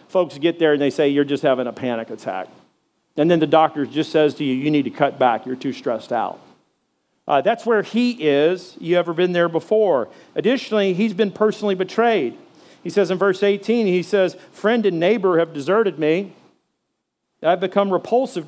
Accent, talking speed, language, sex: American, 195 wpm, English, male